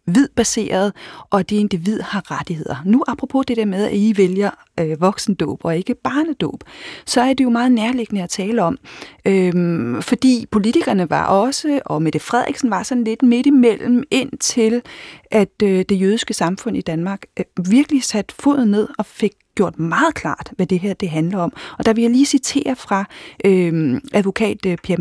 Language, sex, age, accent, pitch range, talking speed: Danish, female, 30-49, native, 180-235 Hz, 180 wpm